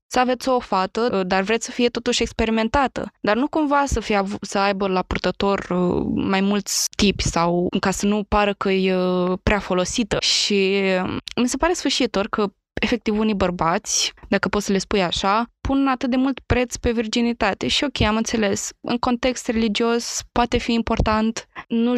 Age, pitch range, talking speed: 20-39, 185-225 Hz, 175 wpm